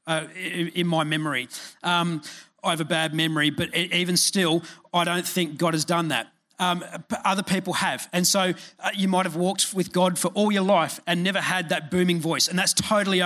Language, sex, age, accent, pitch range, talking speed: English, male, 30-49, Australian, 165-185 Hz, 210 wpm